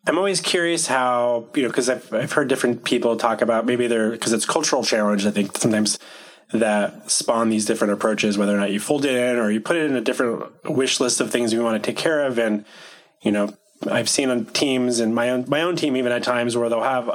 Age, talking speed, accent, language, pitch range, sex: 30-49, 250 wpm, American, English, 110-125 Hz, male